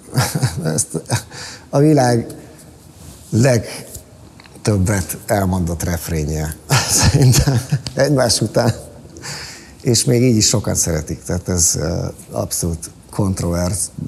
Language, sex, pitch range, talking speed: Hungarian, male, 85-115 Hz, 80 wpm